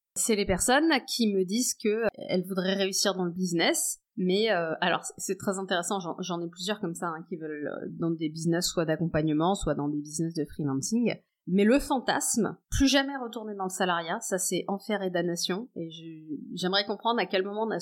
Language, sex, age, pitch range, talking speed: French, female, 30-49, 165-225 Hz, 200 wpm